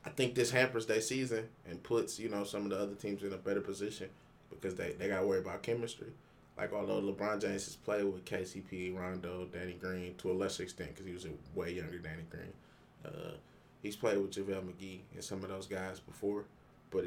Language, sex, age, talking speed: English, male, 20-39, 220 wpm